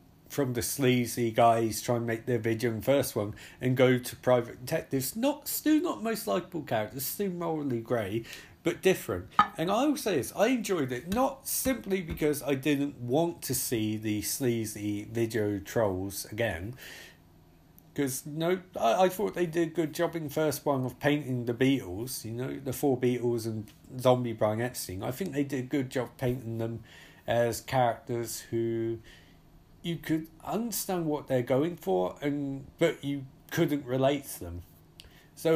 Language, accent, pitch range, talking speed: English, British, 115-155 Hz, 175 wpm